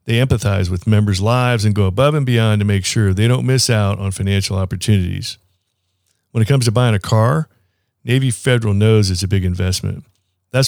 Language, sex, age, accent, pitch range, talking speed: English, male, 50-69, American, 100-120 Hz, 195 wpm